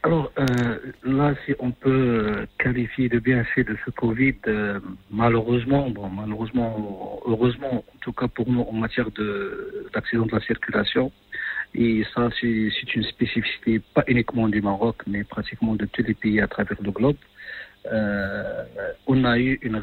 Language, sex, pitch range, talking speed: French, male, 105-125 Hz, 165 wpm